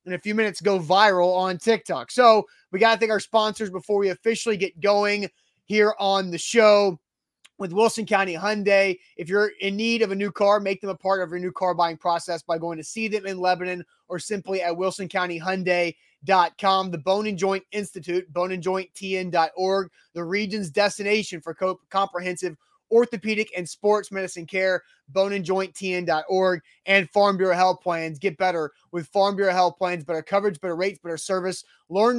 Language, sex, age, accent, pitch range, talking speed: English, male, 20-39, American, 180-210 Hz, 175 wpm